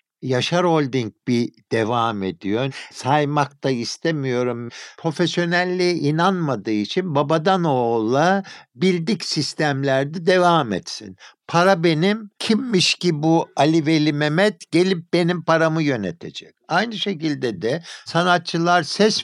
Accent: native